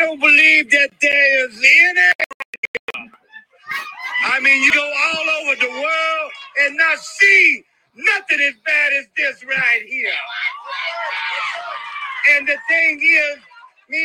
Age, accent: 40-59, American